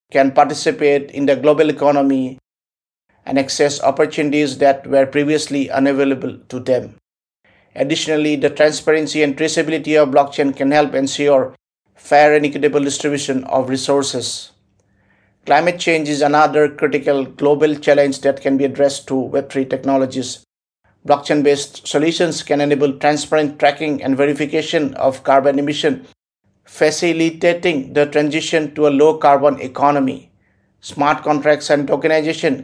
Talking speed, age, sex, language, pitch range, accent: 125 wpm, 50-69, male, English, 135-150 Hz, Indian